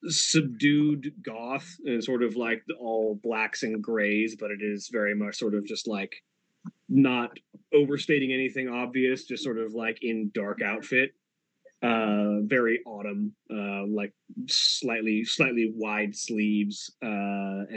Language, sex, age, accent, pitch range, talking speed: English, male, 30-49, American, 105-135 Hz, 135 wpm